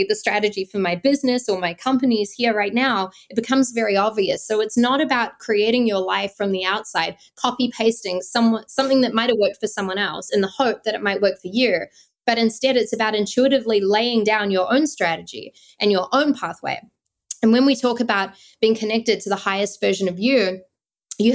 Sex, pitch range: female, 200-245 Hz